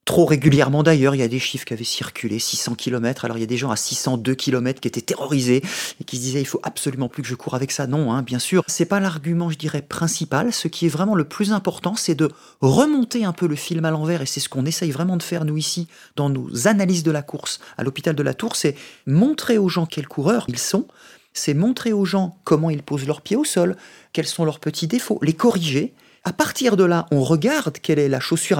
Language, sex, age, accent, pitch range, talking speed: French, male, 40-59, French, 140-180 Hz, 260 wpm